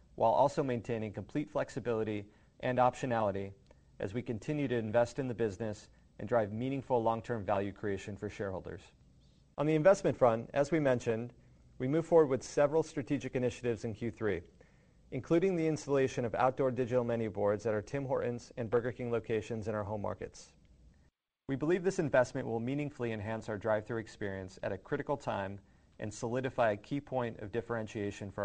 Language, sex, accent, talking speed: English, male, American, 170 wpm